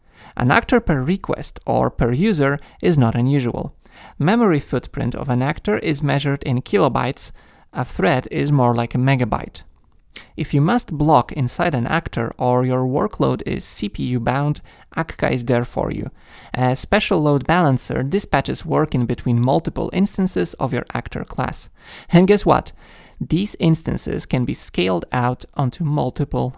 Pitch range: 125-175 Hz